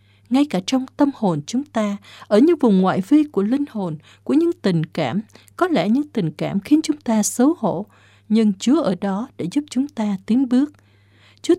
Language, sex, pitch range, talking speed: Vietnamese, female, 175-250 Hz, 205 wpm